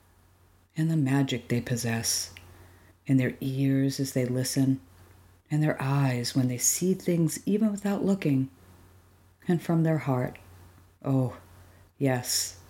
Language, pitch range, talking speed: English, 110-145 Hz, 130 wpm